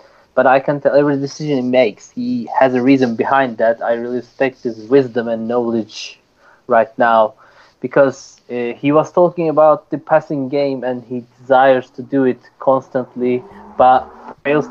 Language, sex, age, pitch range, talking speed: English, male, 20-39, 120-145 Hz, 165 wpm